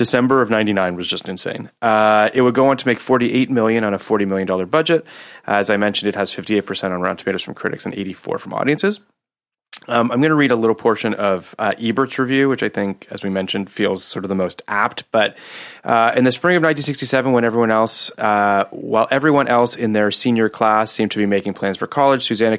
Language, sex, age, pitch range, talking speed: English, male, 30-49, 100-120 Hz, 225 wpm